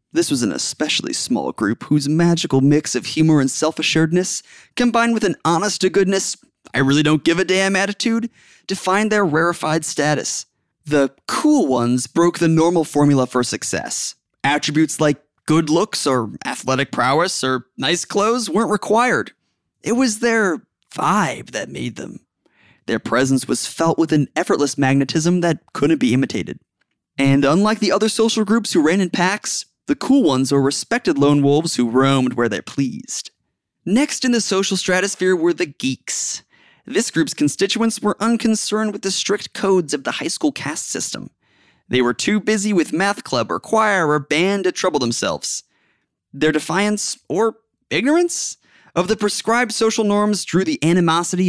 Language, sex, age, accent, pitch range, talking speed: English, male, 30-49, American, 150-220 Hz, 155 wpm